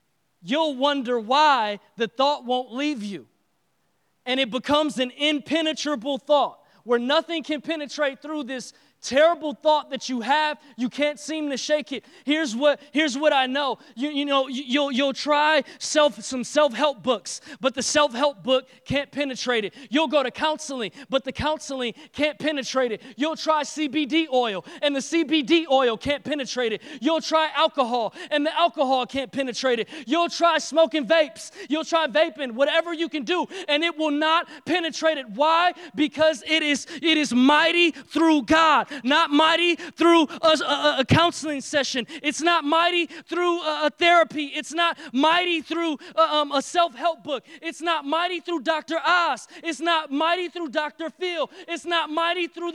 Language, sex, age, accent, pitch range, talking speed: English, male, 20-39, American, 270-330 Hz, 170 wpm